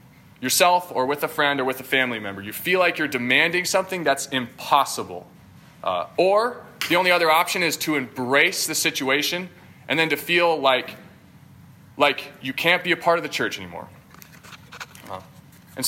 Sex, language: male, English